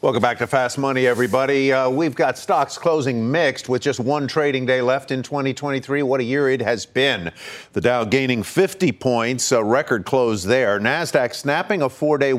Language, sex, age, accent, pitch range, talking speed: English, male, 50-69, American, 120-145 Hz, 190 wpm